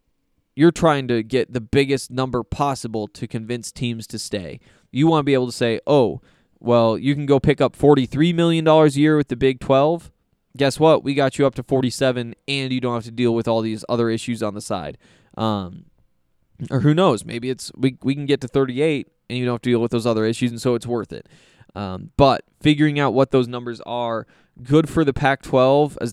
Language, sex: English, male